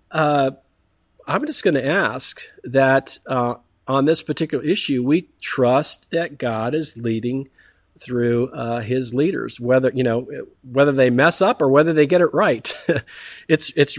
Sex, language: male, English